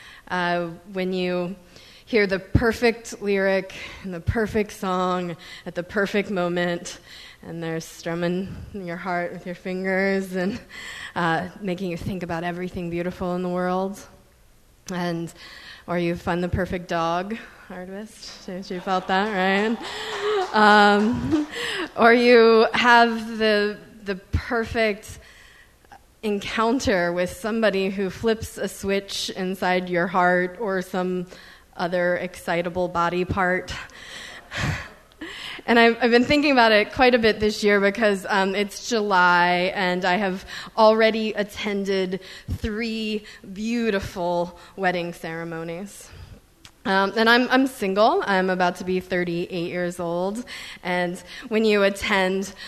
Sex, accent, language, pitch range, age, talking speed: female, American, English, 180-215 Hz, 20-39, 125 wpm